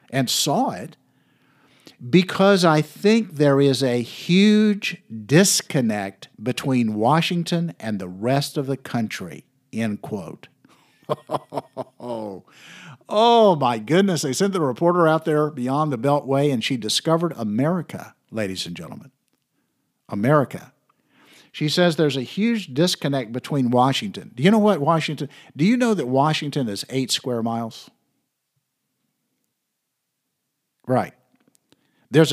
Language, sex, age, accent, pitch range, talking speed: English, male, 60-79, American, 130-185 Hz, 125 wpm